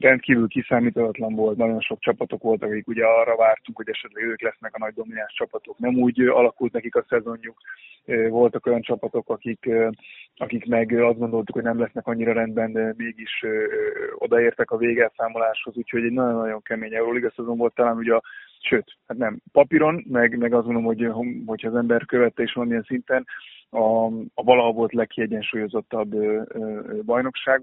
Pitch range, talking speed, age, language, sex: 115-130 Hz, 170 wpm, 20-39, Hungarian, male